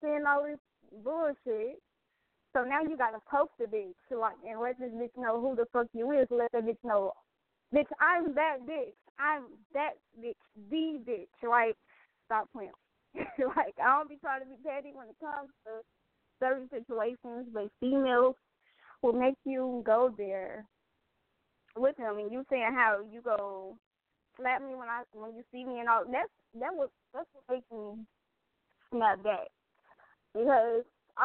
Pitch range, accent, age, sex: 225-290 Hz, American, 10-29, female